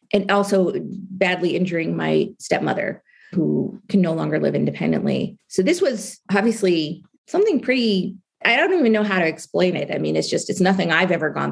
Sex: female